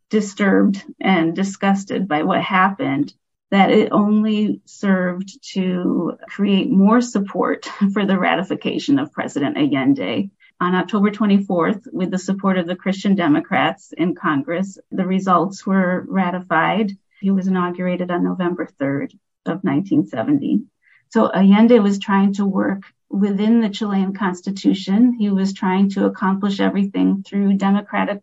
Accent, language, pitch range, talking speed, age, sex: American, English, 185-215 Hz, 130 wpm, 40-59, female